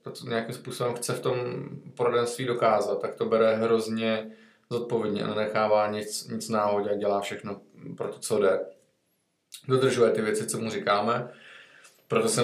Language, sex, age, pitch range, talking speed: Czech, male, 20-39, 105-120 Hz, 165 wpm